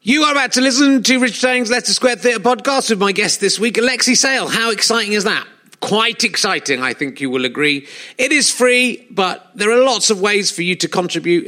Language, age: English, 40-59